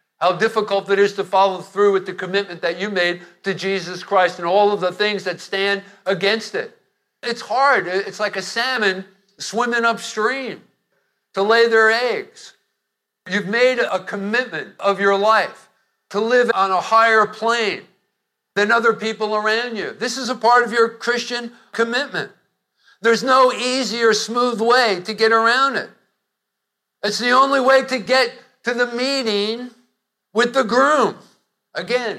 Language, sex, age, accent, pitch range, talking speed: English, male, 50-69, American, 180-230 Hz, 160 wpm